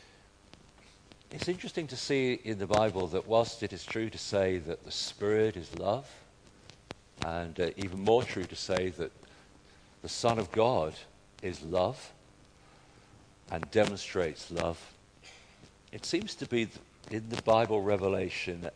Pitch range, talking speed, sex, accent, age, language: 85-100 Hz, 140 wpm, male, British, 50-69, English